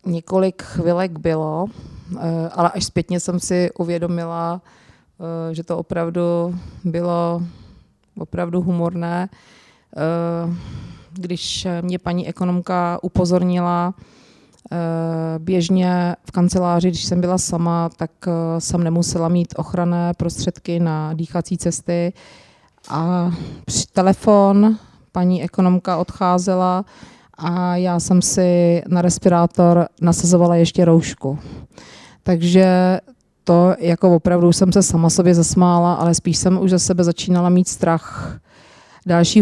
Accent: native